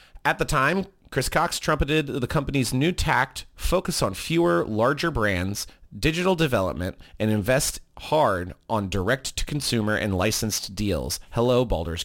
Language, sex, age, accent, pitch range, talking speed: English, male, 30-49, American, 100-140 Hz, 135 wpm